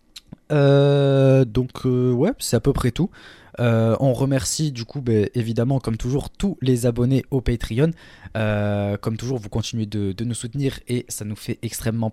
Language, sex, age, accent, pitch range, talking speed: French, male, 20-39, French, 100-125 Hz, 185 wpm